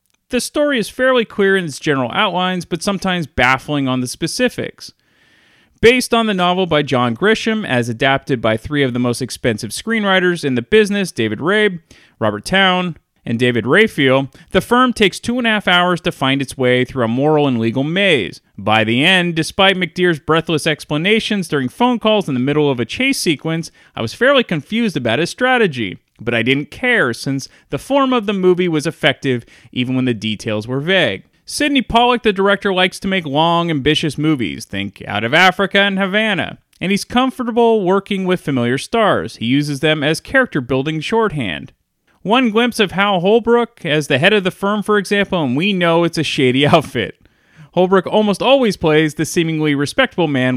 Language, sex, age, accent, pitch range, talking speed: English, male, 30-49, American, 135-205 Hz, 185 wpm